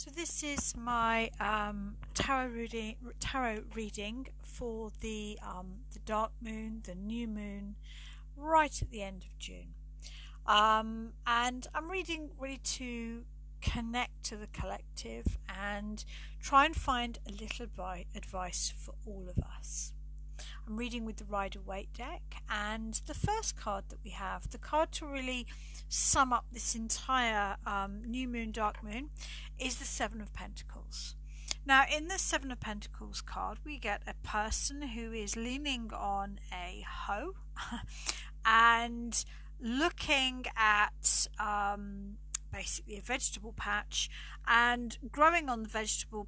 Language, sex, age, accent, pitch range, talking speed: English, female, 50-69, British, 205-250 Hz, 135 wpm